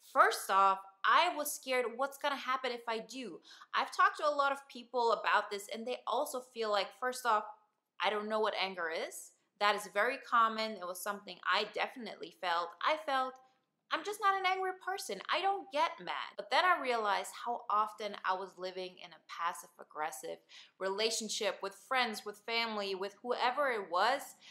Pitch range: 205-275 Hz